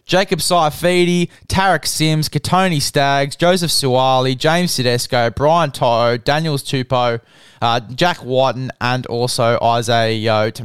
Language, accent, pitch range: English, Australian, 125-155 Hz